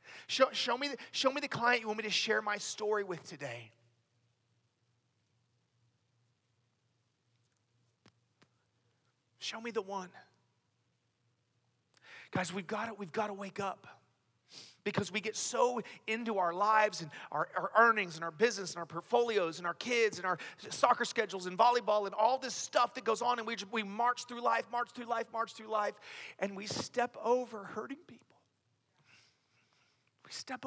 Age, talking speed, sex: 40-59, 160 wpm, male